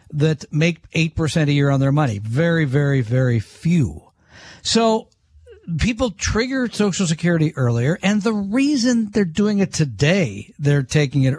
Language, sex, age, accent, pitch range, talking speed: English, male, 50-69, American, 140-205 Hz, 150 wpm